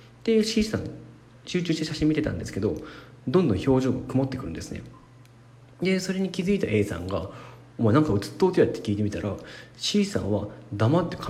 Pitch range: 105-160 Hz